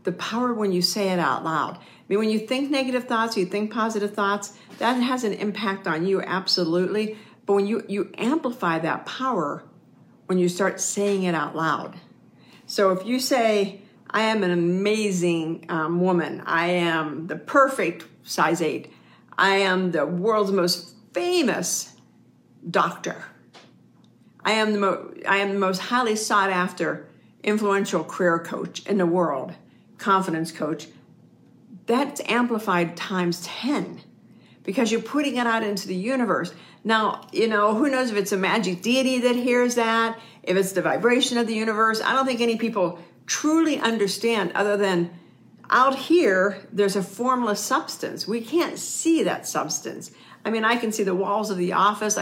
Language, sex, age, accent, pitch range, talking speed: English, female, 50-69, American, 180-230 Hz, 165 wpm